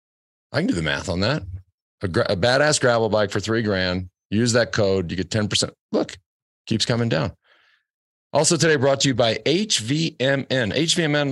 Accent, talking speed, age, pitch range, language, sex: American, 175 wpm, 40-59, 100-135 Hz, English, male